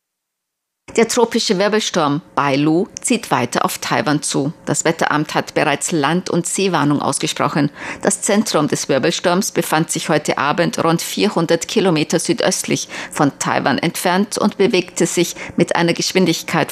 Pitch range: 150-185 Hz